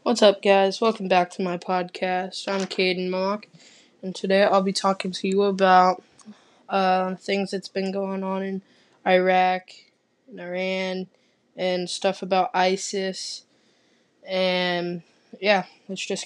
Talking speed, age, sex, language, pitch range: 135 wpm, 10-29, female, English, 185-200 Hz